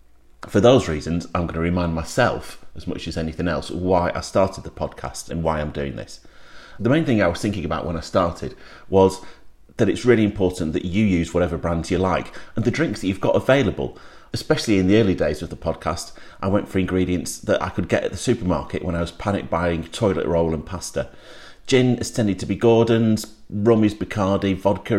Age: 30-49